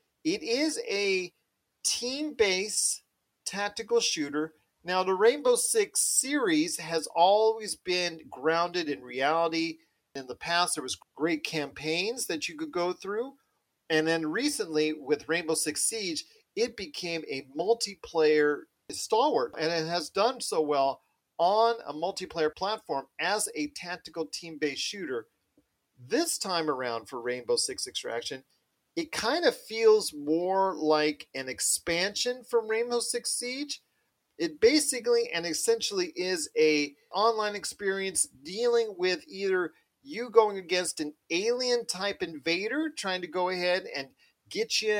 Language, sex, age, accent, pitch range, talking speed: English, male, 40-59, American, 155-240 Hz, 130 wpm